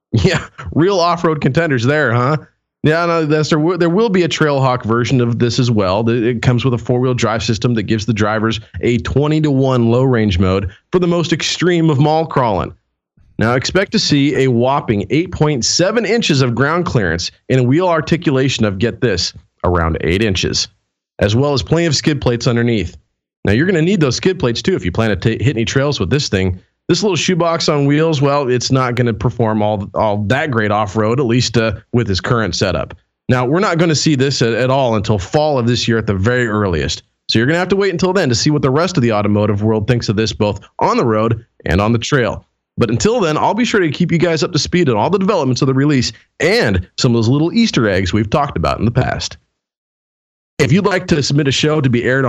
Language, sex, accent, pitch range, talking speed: English, male, American, 110-155 Hz, 230 wpm